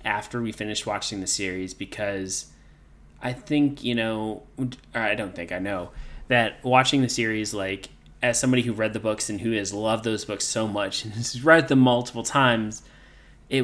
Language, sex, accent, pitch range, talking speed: English, male, American, 100-125 Hz, 190 wpm